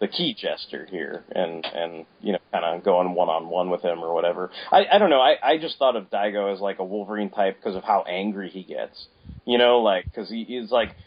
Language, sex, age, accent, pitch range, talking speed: English, male, 30-49, American, 95-110 Hz, 240 wpm